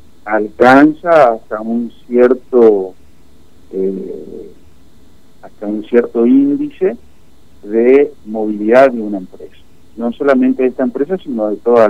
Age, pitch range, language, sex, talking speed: 50-69, 95-125 Hz, Spanish, male, 105 wpm